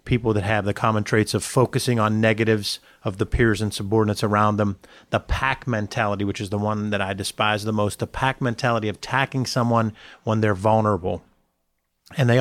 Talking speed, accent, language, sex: 195 wpm, American, English, male